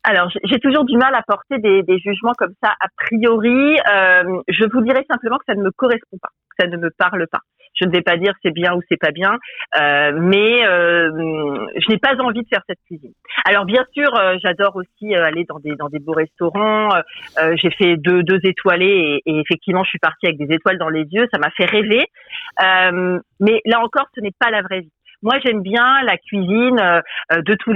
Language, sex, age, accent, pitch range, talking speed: French, female, 40-59, French, 170-225 Hz, 225 wpm